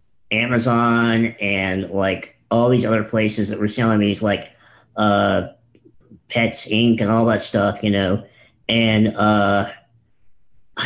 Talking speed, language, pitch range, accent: 125 wpm, English, 110-130 Hz, American